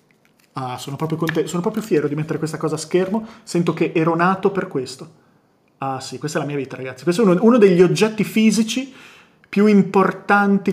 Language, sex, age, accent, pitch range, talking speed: Italian, male, 30-49, native, 150-200 Hz, 190 wpm